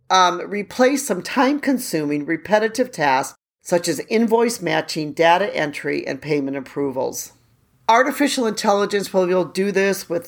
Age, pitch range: 40-59, 150-205 Hz